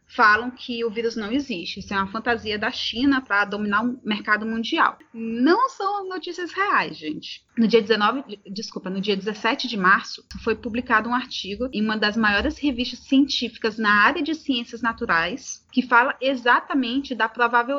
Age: 30-49